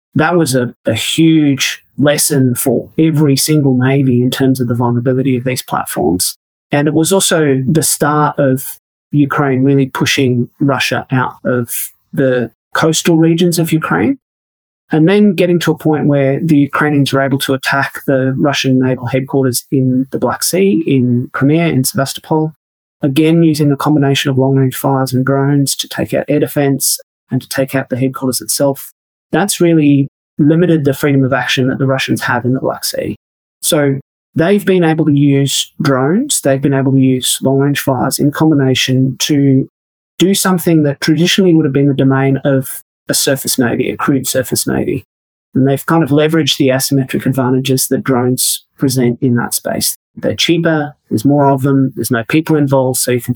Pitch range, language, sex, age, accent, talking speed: 130-150 Hz, English, male, 30-49, Australian, 180 wpm